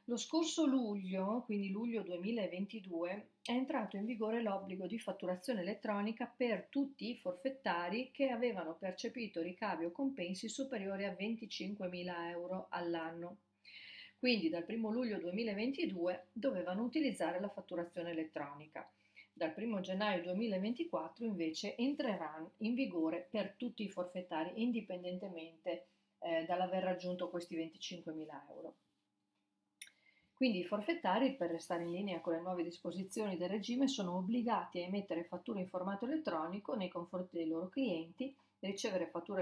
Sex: female